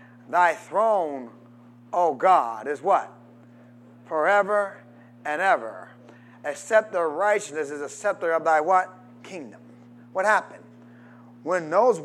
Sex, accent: male, American